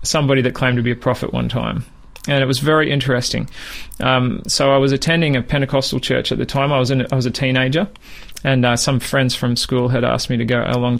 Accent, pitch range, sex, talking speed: Australian, 120-135 Hz, male, 240 wpm